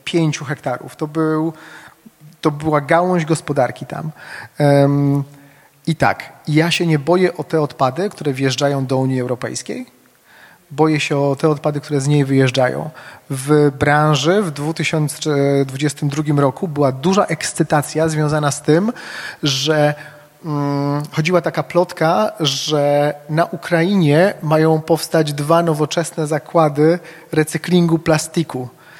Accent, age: native, 30-49